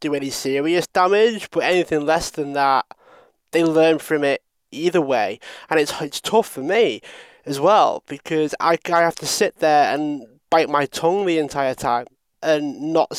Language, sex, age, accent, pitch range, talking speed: English, male, 20-39, British, 140-160 Hz, 180 wpm